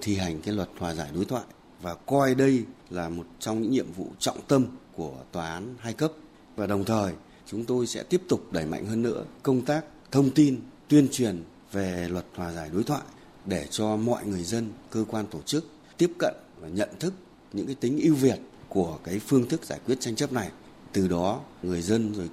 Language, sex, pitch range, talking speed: Vietnamese, male, 95-125 Hz, 220 wpm